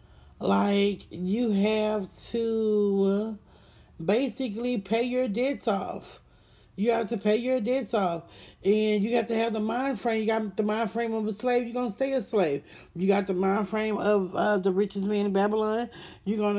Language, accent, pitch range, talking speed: English, American, 185-220 Hz, 190 wpm